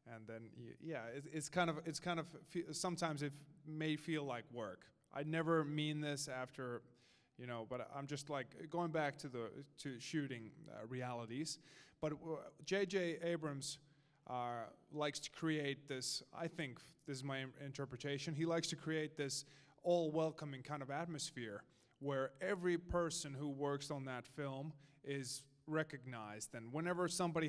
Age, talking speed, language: 20-39, 160 wpm, English